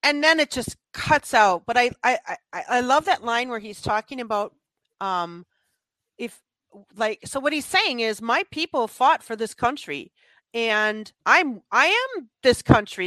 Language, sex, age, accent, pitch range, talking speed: English, female, 40-59, American, 205-275 Hz, 175 wpm